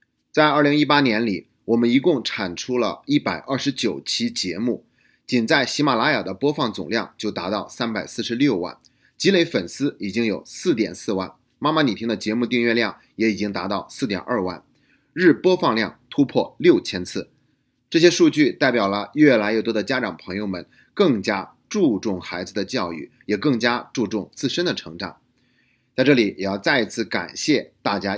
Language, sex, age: Chinese, male, 30-49